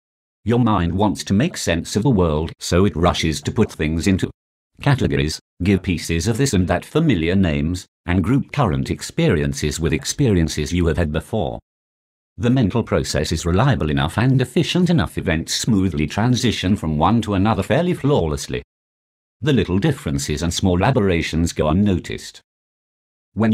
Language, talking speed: English, 160 wpm